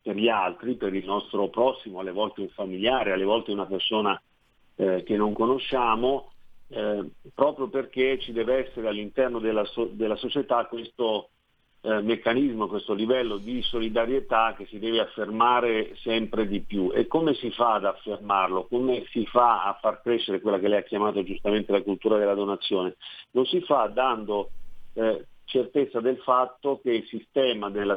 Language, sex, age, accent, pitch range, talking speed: Italian, male, 50-69, native, 105-120 Hz, 165 wpm